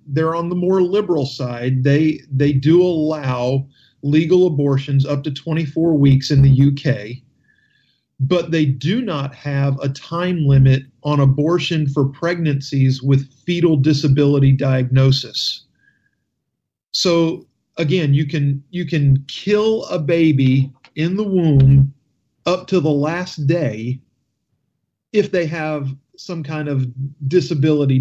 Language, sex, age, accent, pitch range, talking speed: English, male, 40-59, American, 135-165 Hz, 125 wpm